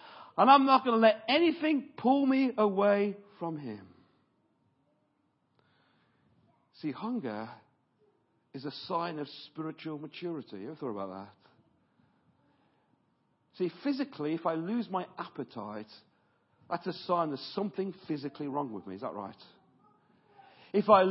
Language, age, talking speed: English, 50-69, 135 wpm